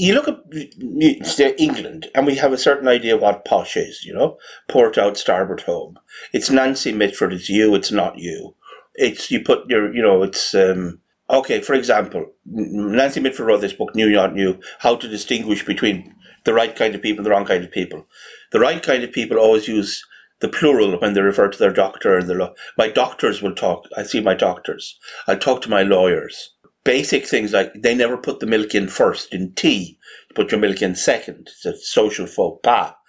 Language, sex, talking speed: English, male, 210 wpm